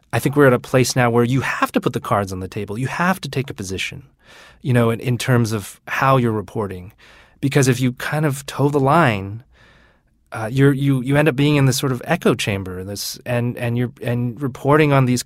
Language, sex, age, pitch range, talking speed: English, male, 30-49, 110-140 Hz, 240 wpm